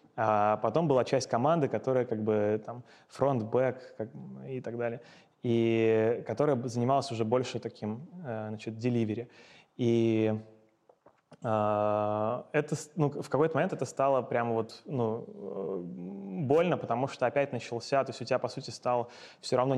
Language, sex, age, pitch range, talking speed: Russian, male, 20-39, 115-130 Hz, 145 wpm